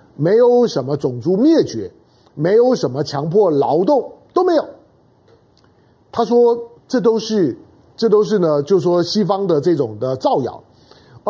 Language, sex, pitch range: Chinese, male, 170-245 Hz